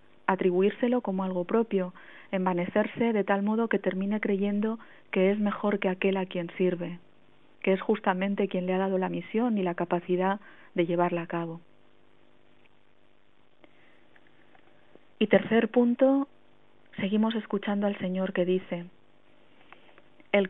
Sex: female